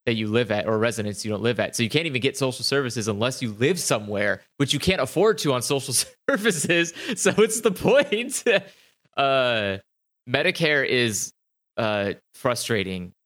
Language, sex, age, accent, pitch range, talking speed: English, male, 20-39, American, 105-135 Hz, 170 wpm